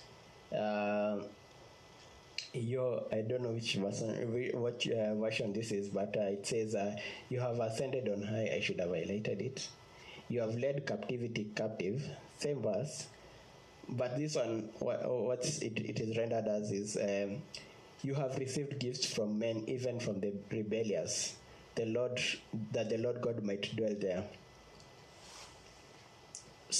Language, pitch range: English, 110-130 Hz